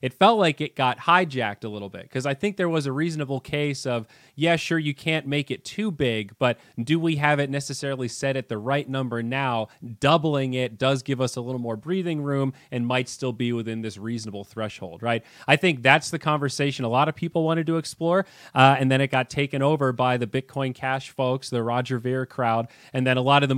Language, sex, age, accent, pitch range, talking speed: English, male, 30-49, American, 125-160 Hz, 230 wpm